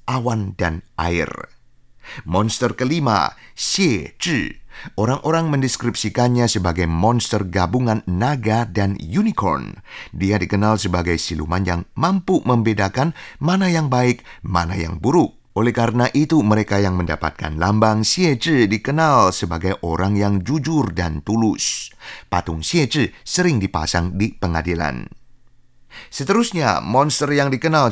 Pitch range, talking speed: 95-130 Hz, 110 wpm